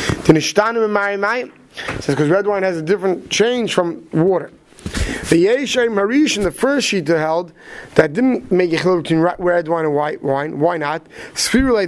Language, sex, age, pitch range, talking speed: English, male, 30-49, 165-230 Hz, 160 wpm